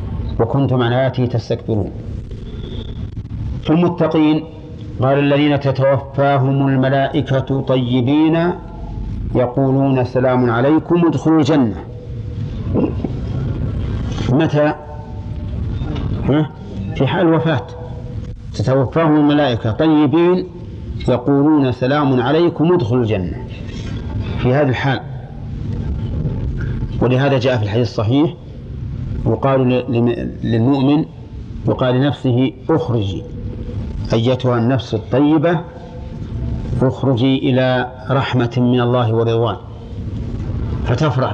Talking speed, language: 75 wpm, Arabic